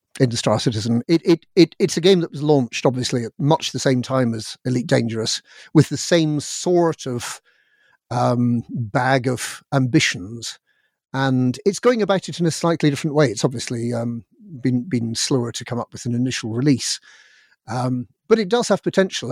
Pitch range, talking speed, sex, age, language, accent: 120-155 Hz, 185 wpm, male, 50-69, English, British